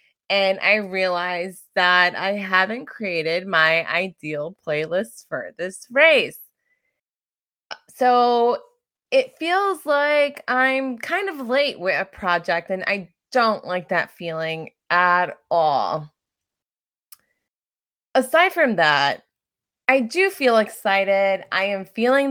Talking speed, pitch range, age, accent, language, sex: 115 wpm, 185-290 Hz, 20-39, American, English, female